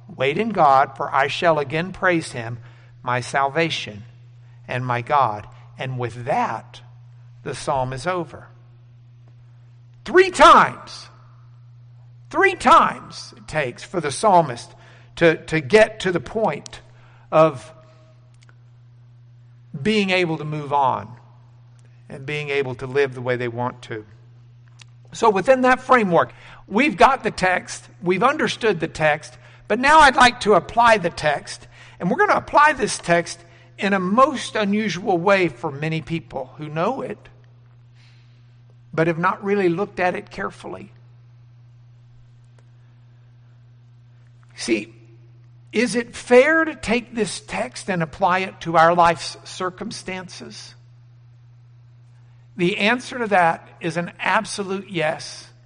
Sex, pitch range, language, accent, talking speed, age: male, 120-175 Hz, English, American, 130 wpm, 60-79